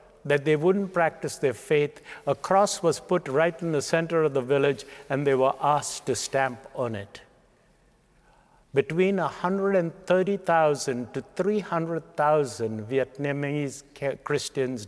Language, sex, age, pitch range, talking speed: English, male, 60-79, 135-170 Hz, 125 wpm